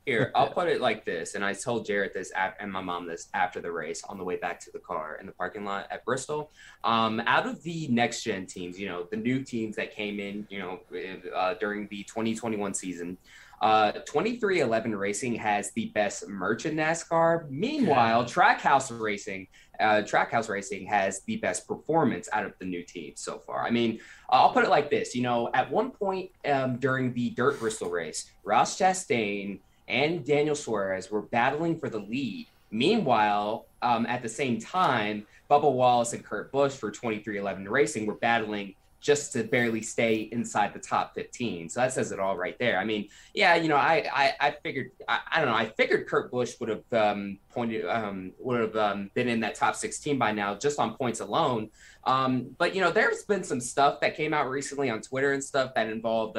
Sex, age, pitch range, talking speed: male, 20-39, 105-140 Hz, 205 wpm